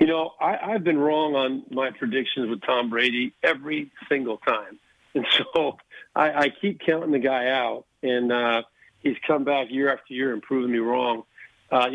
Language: English